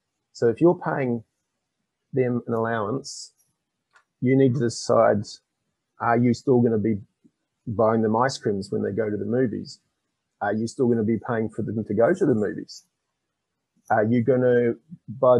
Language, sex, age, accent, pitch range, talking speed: English, male, 30-49, Australian, 110-130 Hz, 180 wpm